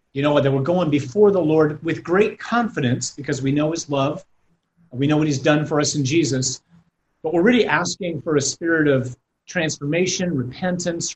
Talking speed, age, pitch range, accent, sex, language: 190 wpm, 40-59, 145-185 Hz, American, male, English